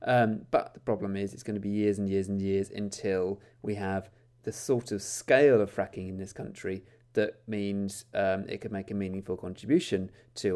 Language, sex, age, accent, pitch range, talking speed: English, male, 30-49, British, 100-130 Hz, 205 wpm